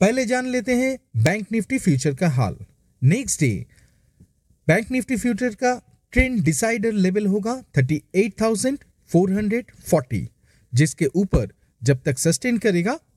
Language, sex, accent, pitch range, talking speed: Hindi, male, native, 140-230 Hz, 120 wpm